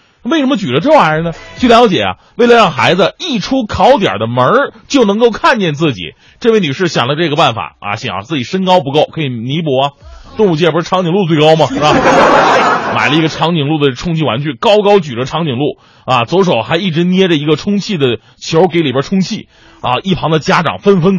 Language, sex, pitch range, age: Chinese, male, 135-190 Hz, 30-49